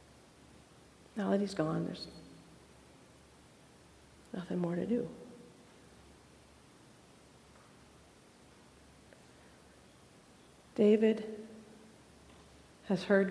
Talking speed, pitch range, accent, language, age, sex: 55 wpm, 160-210 Hz, American, English, 50-69, female